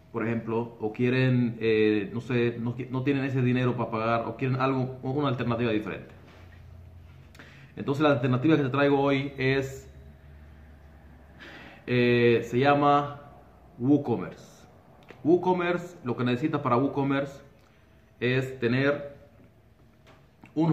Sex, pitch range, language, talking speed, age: male, 110-130 Hz, Spanish, 120 wpm, 30-49